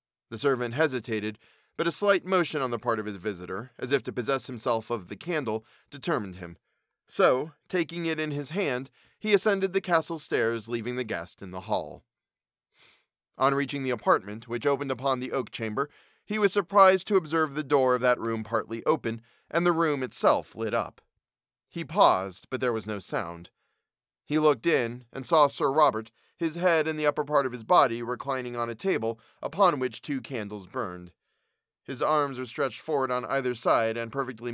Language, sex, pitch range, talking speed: English, male, 110-150 Hz, 190 wpm